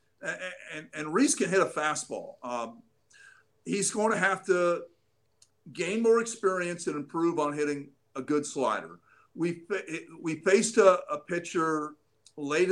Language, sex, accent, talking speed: English, male, American, 145 wpm